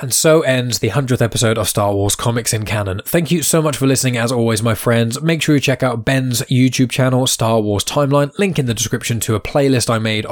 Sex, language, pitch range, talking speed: male, English, 110-145 Hz, 245 wpm